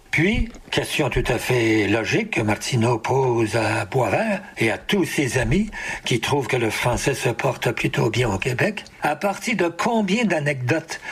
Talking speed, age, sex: 175 wpm, 60-79, male